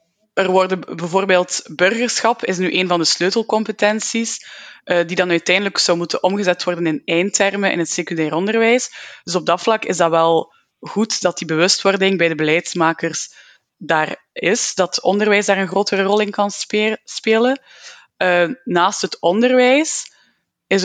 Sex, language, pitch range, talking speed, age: female, Dutch, 170-215 Hz, 150 wpm, 20-39